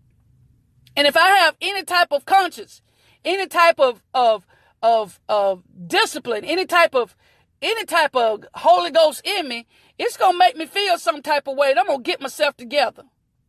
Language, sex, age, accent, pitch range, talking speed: English, female, 40-59, American, 275-350 Hz, 185 wpm